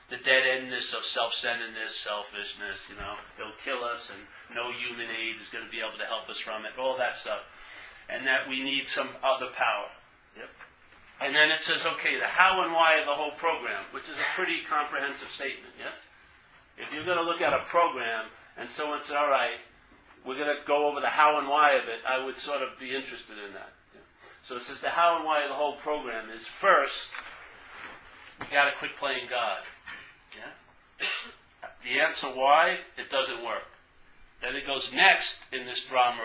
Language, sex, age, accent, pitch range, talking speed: English, male, 50-69, American, 115-150 Hz, 200 wpm